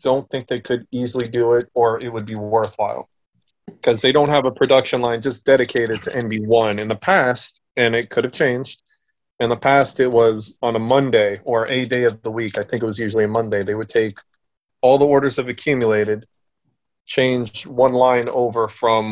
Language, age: English, 30-49